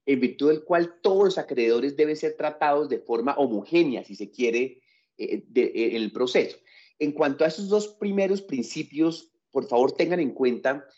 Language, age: English, 30-49